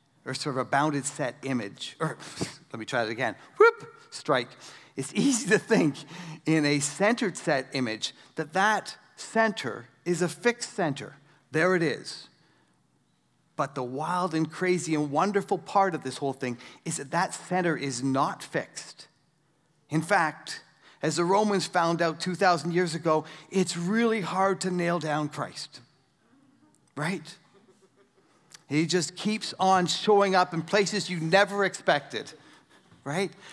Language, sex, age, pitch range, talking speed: English, male, 40-59, 155-200 Hz, 150 wpm